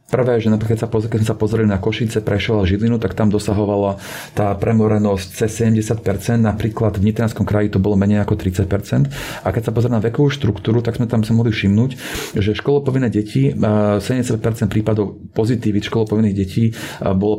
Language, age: Slovak, 40-59